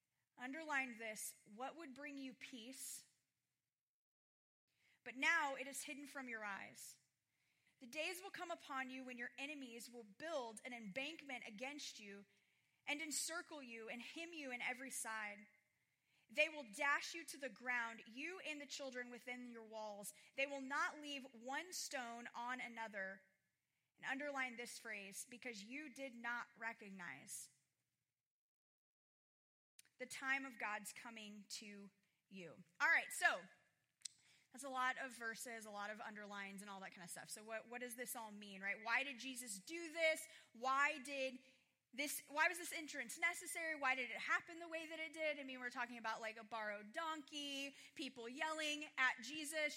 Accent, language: American, English